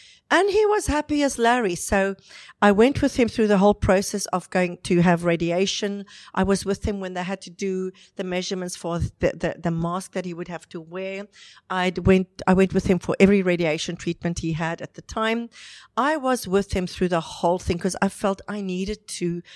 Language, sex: English, female